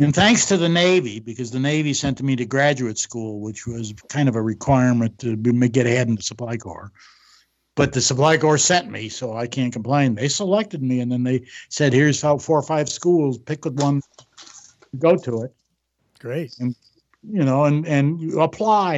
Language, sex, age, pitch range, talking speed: English, male, 60-79, 125-150 Hz, 200 wpm